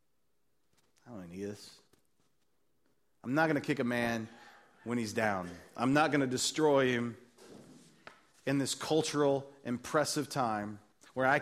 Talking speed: 135 wpm